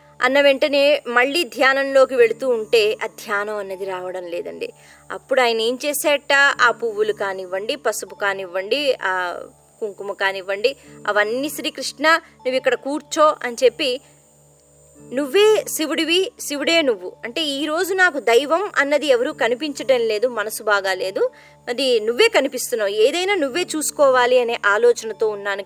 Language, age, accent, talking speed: Telugu, 20-39, native, 125 wpm